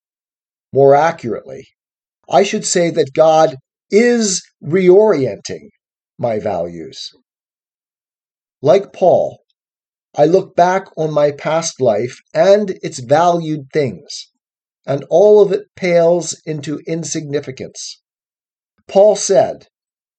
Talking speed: 100 wpm